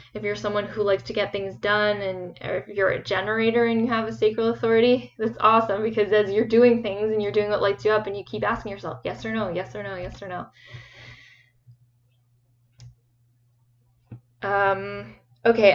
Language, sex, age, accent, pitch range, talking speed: English, female, 10-29, American, 180-225 Hz, 195 wpm